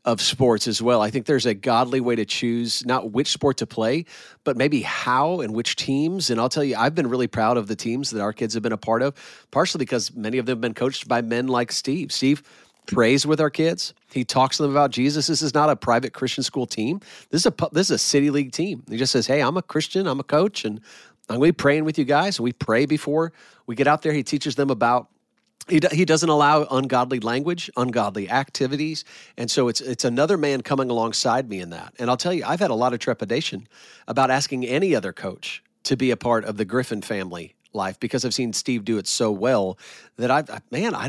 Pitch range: 120-150 Hz